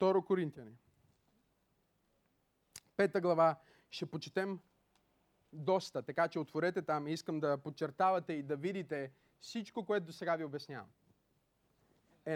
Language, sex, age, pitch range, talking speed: Bulgarian, male, 30-49, 160-230 Hz, 120 wpm